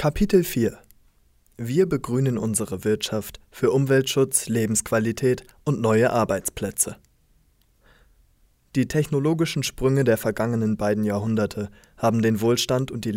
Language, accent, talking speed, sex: German, German, 110 wpm, male